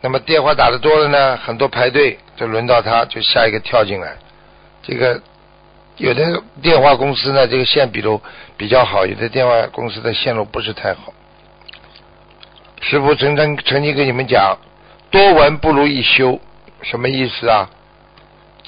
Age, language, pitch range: 60-79, Chinese, 135-195 Hz